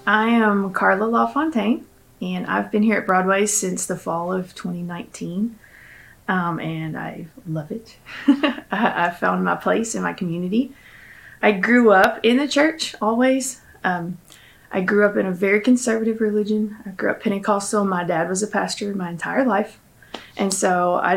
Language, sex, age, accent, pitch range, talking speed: English, female, 20-39, American, 180-215 Hz, 165 wpm